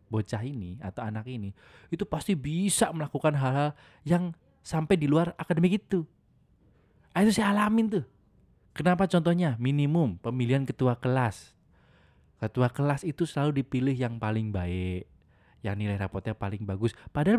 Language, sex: Indonesian, male